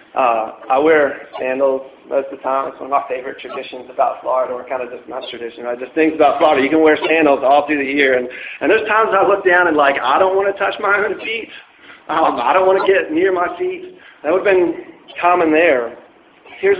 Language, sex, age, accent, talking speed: English, male, 40-59, American, 245 wpm